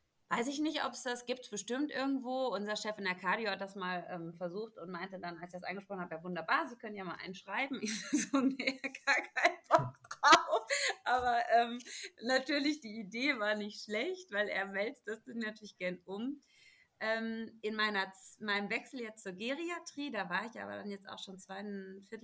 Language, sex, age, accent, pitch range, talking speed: German, female, 30-49, German, 180-225 Hz, 200 wpm